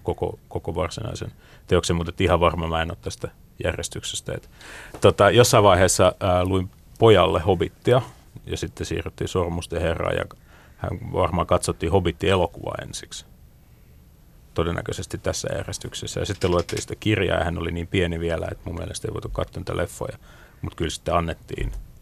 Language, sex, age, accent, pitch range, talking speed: Finnish, male, 30-49, native, 85-95 Hz, 150 wpm